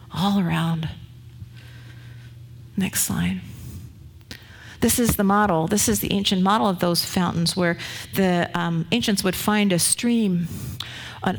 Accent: American